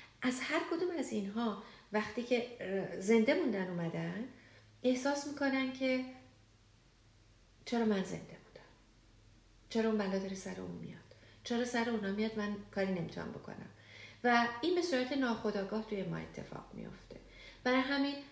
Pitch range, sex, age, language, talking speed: 175-240 Hz, female, 40-59, English, 140 wpm